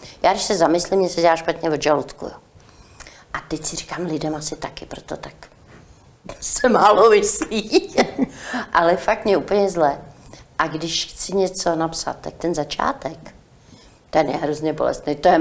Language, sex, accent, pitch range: Czech, female, native, 145-165 Hz